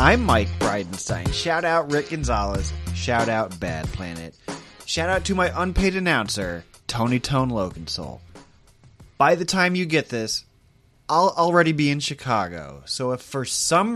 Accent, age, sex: American, 30-49, male